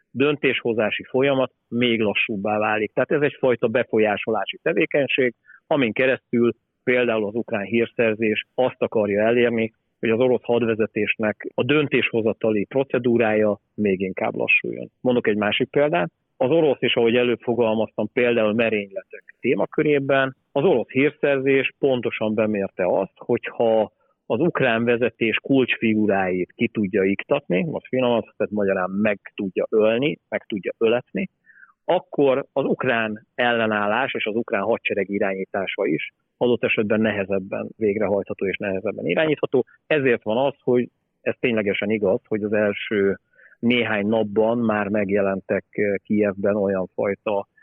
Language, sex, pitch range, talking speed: Hungarian, male, 105-120 Hz, 125 wpm